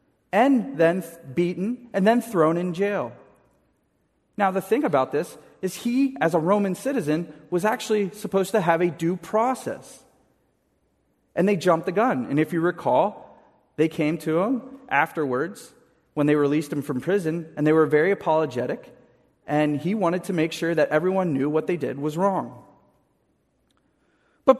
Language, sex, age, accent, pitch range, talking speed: English, male, 30-49, American, 155-230 Hz, 165 wpm